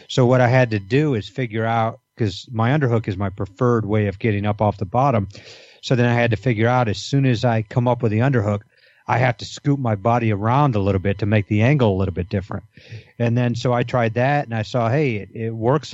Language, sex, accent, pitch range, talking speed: English, male, American, 105-125 Hz, 260 wpm